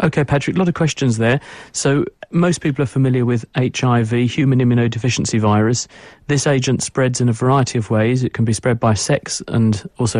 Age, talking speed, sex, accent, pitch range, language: 40-59, 195 wpm, male, British, 110-135 Hz, English